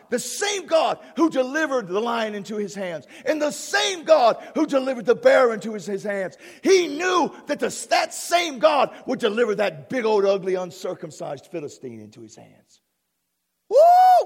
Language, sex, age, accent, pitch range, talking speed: English, male, 50-69, American, 170-260 Hz, 175 wpm